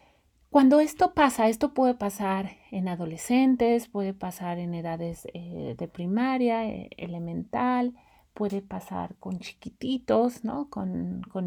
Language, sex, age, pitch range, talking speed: Spanish, female, 30-49, 180-240 Hz, 120 wpm